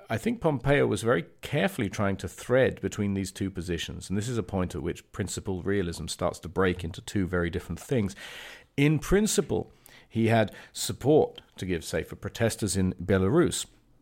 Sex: male